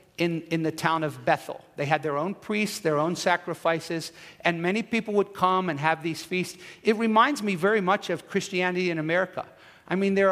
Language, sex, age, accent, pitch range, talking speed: English, male, 50-69, American, 165-205 Hz, 205 wpm